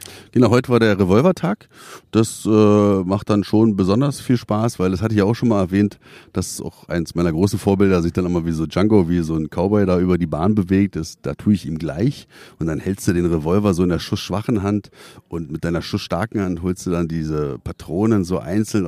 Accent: German